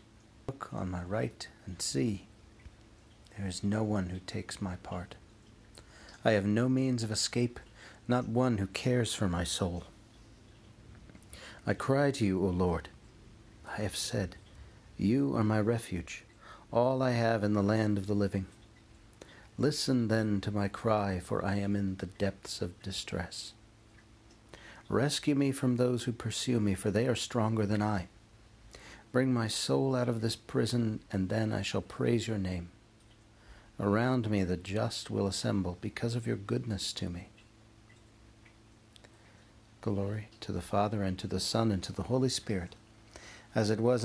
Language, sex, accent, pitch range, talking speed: English, male, American, 100-115 Hz, 160 wpm